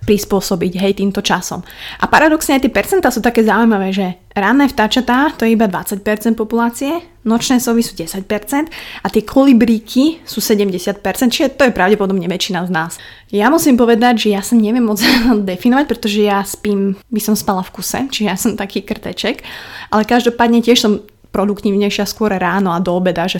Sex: female